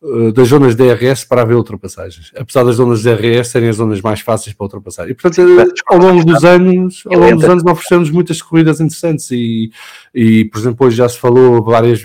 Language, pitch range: English, 110-145 Hz